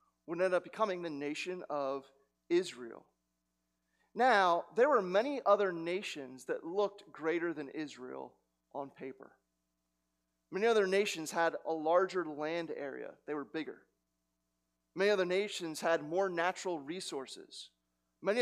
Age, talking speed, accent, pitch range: 30-49, 130 wpm, American, 120-190 Hz